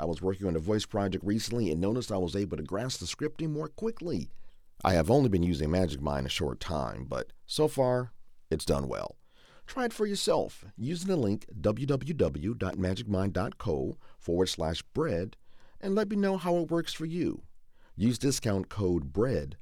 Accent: American